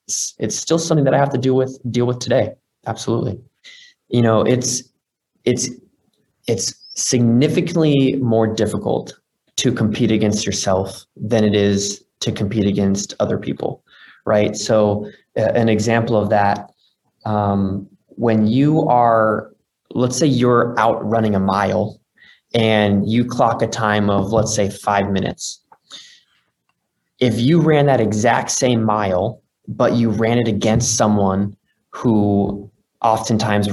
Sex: male